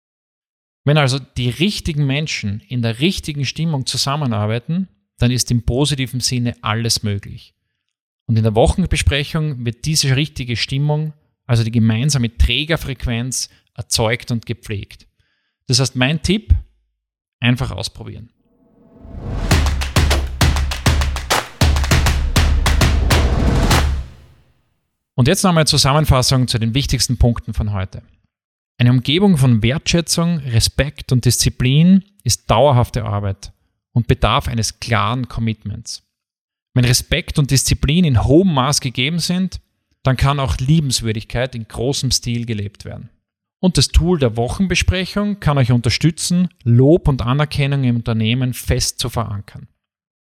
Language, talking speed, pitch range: German, 115 wpm, 110-150 Hz